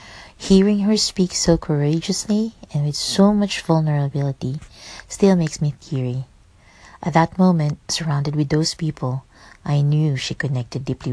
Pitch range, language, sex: 140-175 Hz, English, female